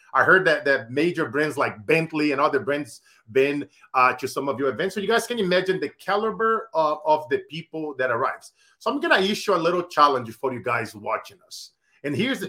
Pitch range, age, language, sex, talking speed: 150-210 Hz, 40-59, English, male, 225 wpm